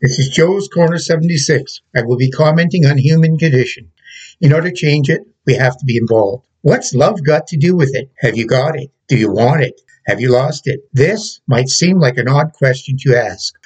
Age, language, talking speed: 60-79, English, 220 wpm